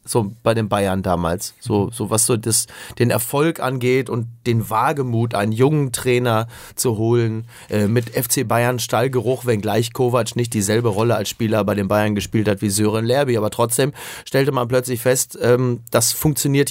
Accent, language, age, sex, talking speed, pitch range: German, German, 30-49, male, 185 wpm, 115-145 Hz